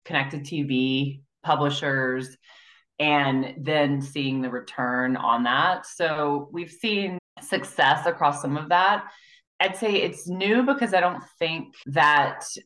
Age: 20-39